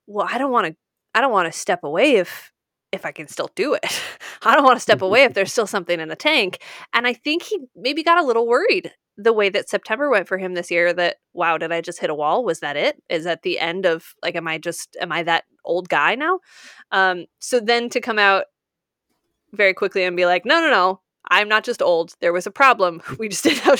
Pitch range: 180-255 Hz